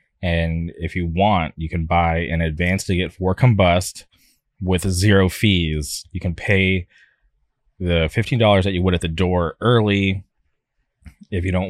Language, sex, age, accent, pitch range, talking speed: English, male, 20-39, American, 85-95 Hz, 155 wpm